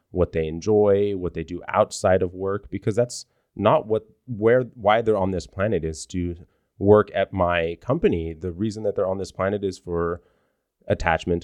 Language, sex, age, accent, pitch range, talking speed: English, male, 30-49, American, 90-110 Hz, 185 wpm